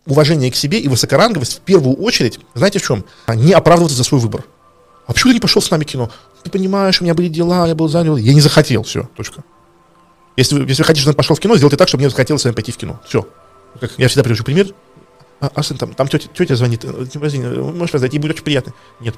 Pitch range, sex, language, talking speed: 125-160 Hz, male, Russian, 245 wpm